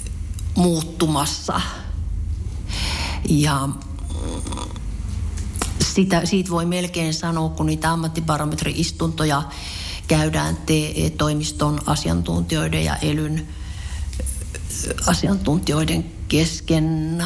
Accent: native